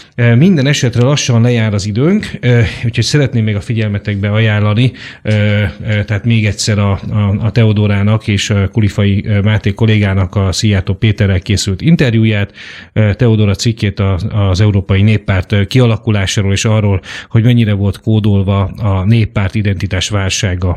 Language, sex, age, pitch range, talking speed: Hungarian, male, 30-49, 100-110 Hz, 130 wpm